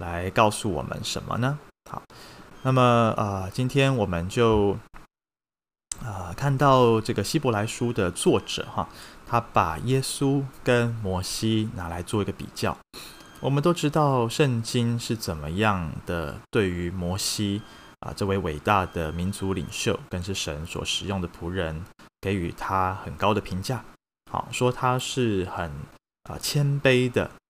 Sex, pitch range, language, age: male, 95-125 Hz, Chinese, 20-39